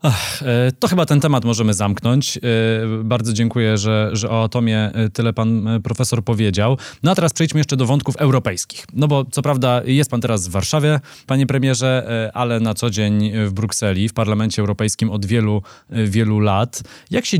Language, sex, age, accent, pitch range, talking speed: Polish, male, 20-39, native, 105-130 Hz, 175 wpm